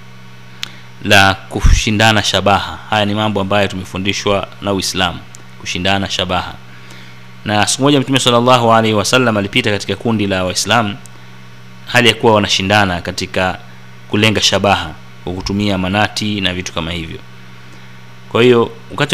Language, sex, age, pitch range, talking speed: Swahili, male, 30-49, 95-130 Hz, 120 wpm